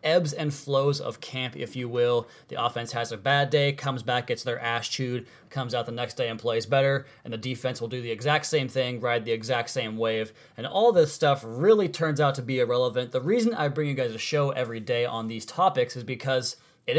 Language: English